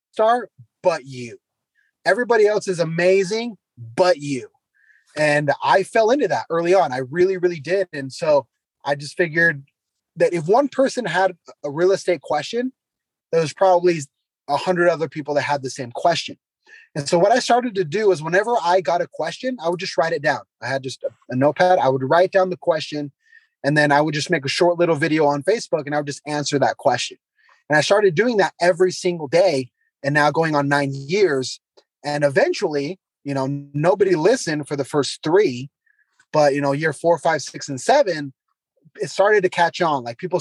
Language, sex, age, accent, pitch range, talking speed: English, male, 30-49, American, 140-185 Hz, 200 wpm